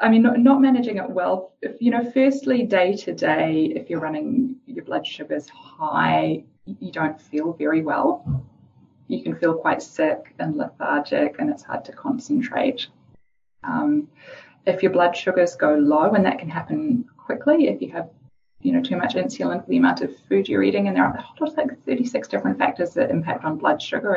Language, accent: English, Australian